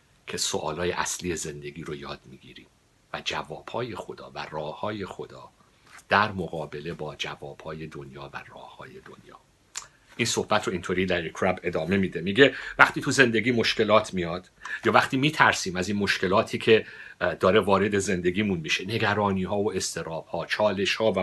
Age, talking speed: 50-69, 145 wpm